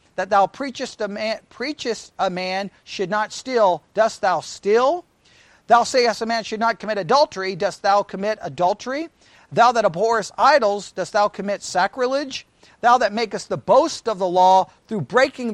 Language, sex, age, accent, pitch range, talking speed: English, male, 40-59, American, 190-250 Hz, 160 wpm